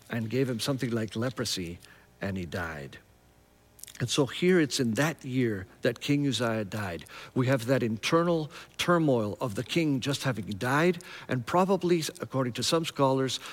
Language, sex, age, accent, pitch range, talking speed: English, male, 50-69, American, 115-165 Hz, 165 wpm